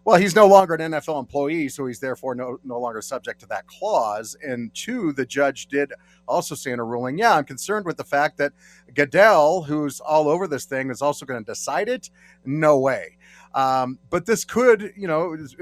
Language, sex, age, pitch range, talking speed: English, male, 40-59, 125-160 Hz, 210 wpm